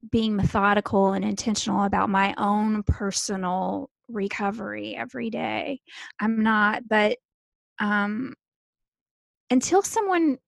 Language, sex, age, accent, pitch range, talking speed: English, female, 20-39, American, 190-225 Hz, 95 wpm